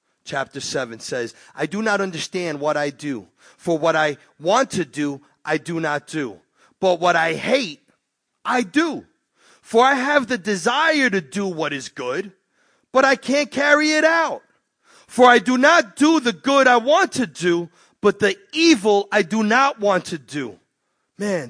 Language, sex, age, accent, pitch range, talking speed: English, male, 30-49, American, 165-270 Hz, 175 wpm